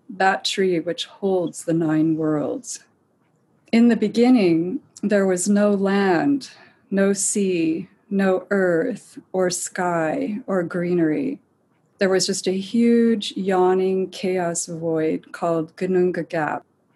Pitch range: 170-205 Hz